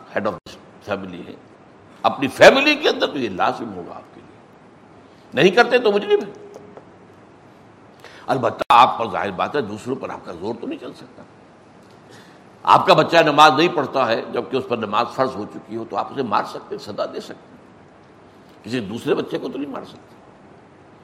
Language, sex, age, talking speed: Urdu, male, 60-79, 185 wpm